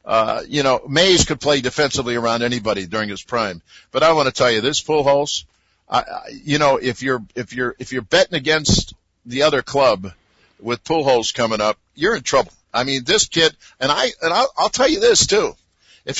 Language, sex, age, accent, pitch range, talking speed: English, male, 50-69, American, 120-155 Hz, 210 wpm